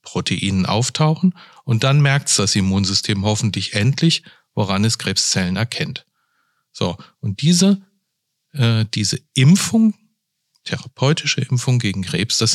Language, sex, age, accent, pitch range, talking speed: German, male, 40-59, German, 105-150 Hz, 115 wpm